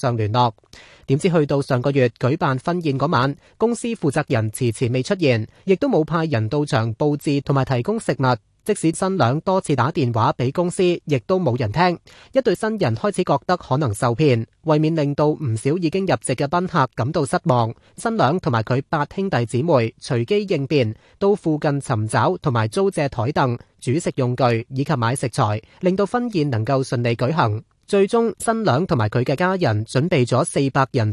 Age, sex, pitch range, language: 30-49, male, 125-175 Hz, Chinese